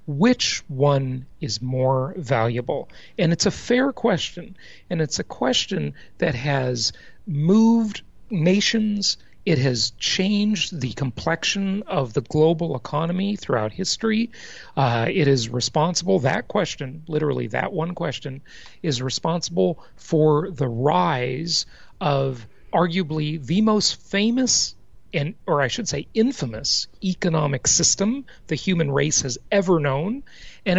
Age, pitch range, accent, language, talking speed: 40-59, 135-190 Hz, American, English, 125 wpm